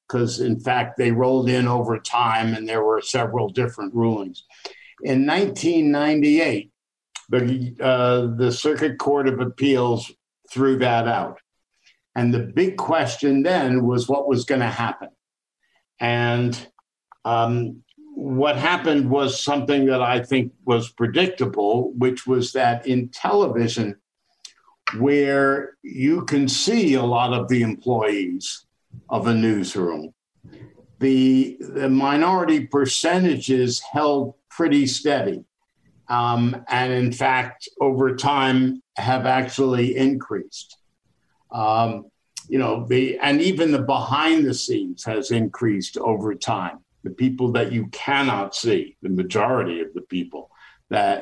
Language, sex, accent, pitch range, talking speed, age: English, male, American, 115-140 Hz, 125 wpm, 60-79